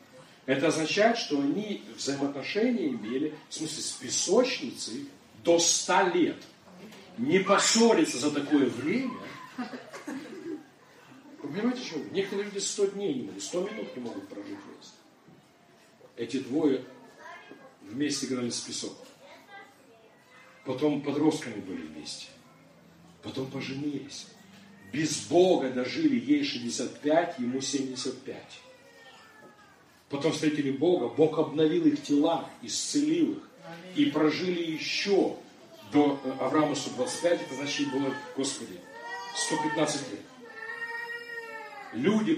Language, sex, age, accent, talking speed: Russian, male, 50-69, native, 110 wpm